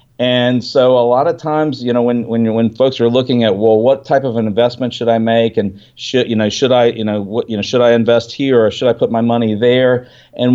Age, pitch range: 50-69, 115-135 Hz